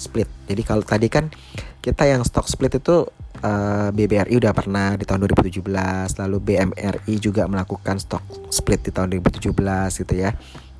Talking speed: 145 wpm